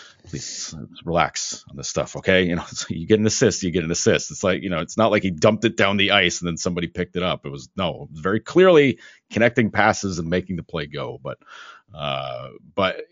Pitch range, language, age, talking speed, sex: 85-125 Hz, English, 40-59, 230 wpm, male